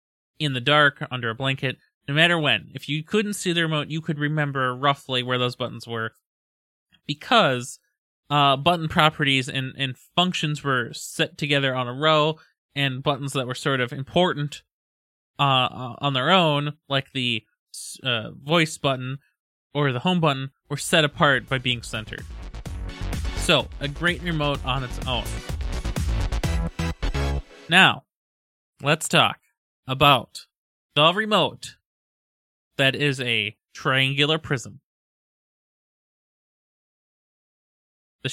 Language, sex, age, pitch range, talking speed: English, male, 20-39, 125-155 Hz, 125 wpm